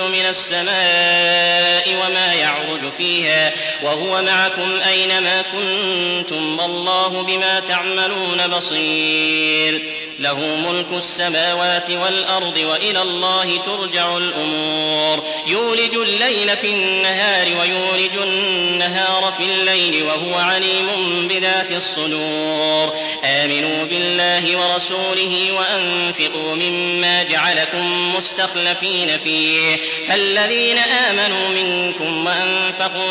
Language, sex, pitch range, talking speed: English, male, 160-190 Hz, 80 wpm